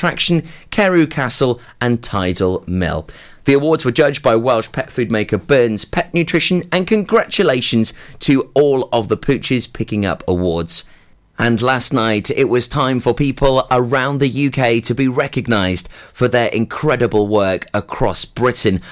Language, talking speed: English, 150 wpm